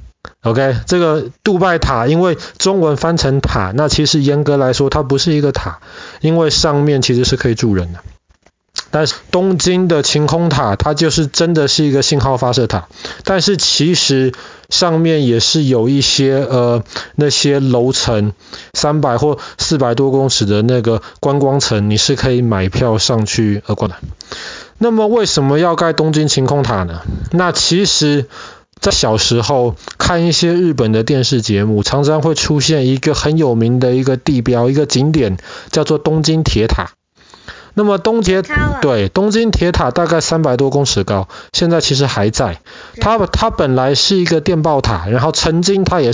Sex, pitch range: male, 120-155 Hz